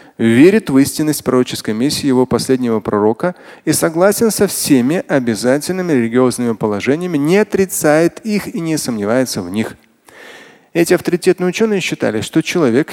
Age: 30-49